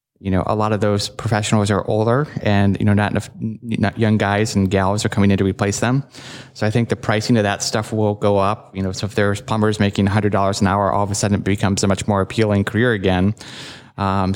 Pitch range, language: 100-115 Hz, English